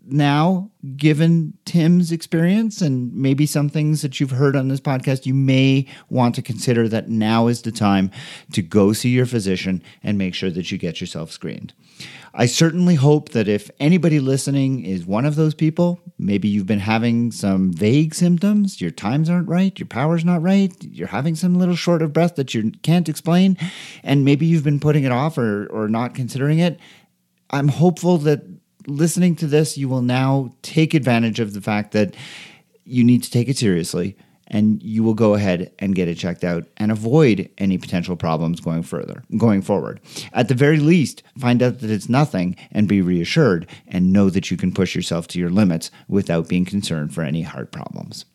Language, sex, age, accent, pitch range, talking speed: English, male, 40-59, American, 105-160 Hz, 195 wpm